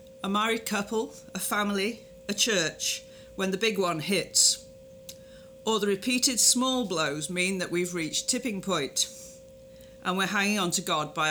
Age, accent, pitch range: 40-59, British, 170-225 Hz